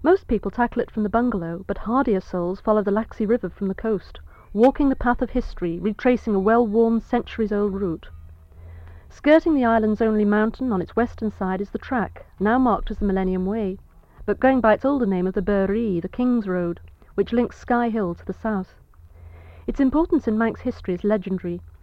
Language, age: English, 40-59